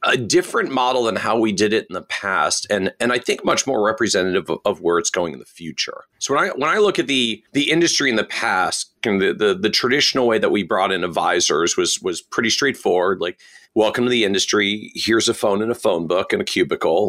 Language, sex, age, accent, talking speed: English, male, 40-59, American, 250 wpm